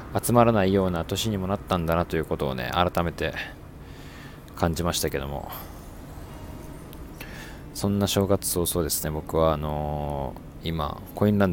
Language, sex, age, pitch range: Japanese, male, 20-39, 80-100 Hz